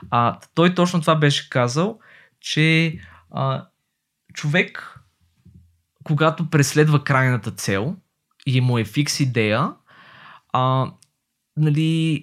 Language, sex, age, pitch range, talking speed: Bulgarian, male, 20-39, 120-160 Hz, 100 wpm